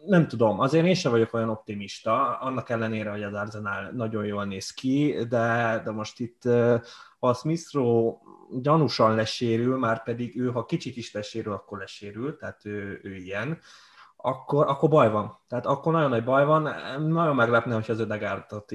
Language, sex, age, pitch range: Hungarian, male, 20-39, 110-130 Hz